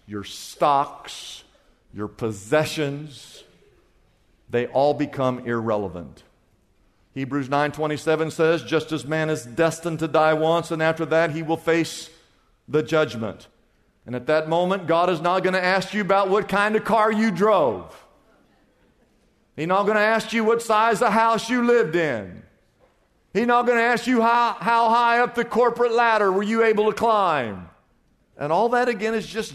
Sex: male